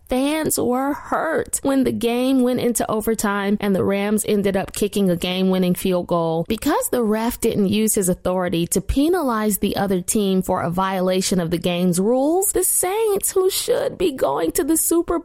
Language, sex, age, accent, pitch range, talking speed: English, female, 20-39, American, 185-270 Hz, 185 wpm